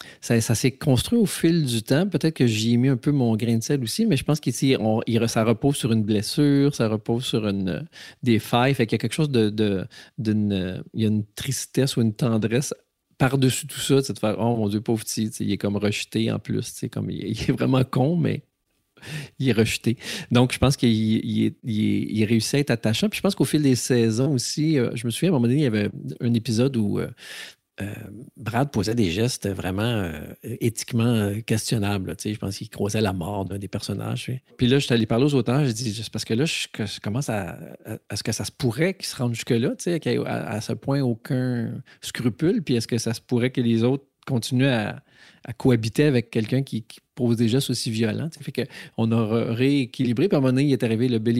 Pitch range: 110-130 Hz